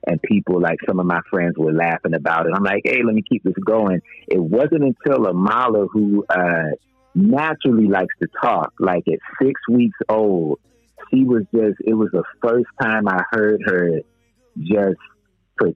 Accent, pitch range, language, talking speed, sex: American, 100-130 Hz, English, 180 wpm, male